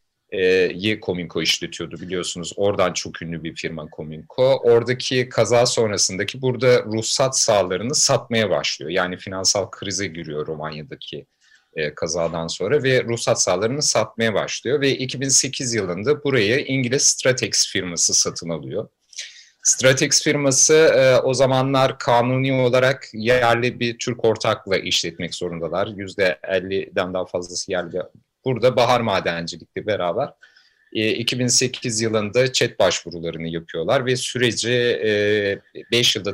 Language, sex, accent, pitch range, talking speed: Turkish, male, native, 95-130 Hz, 115 wpm